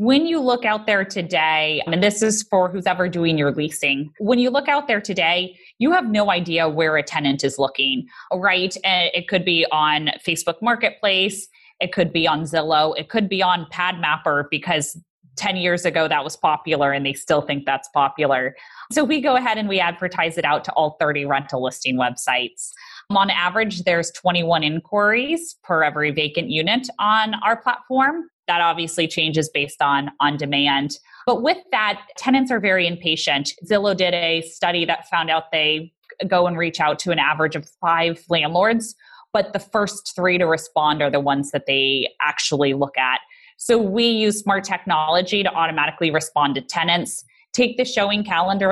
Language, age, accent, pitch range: English, 20-39, American, 155-210 Hz